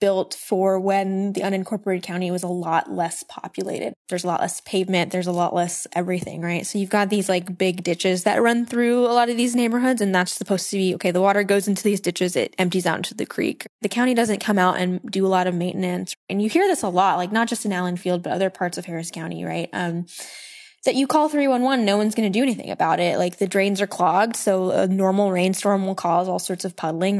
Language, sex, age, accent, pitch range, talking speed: English, female, 10-29, American, 185-225 Hz, 250 wpm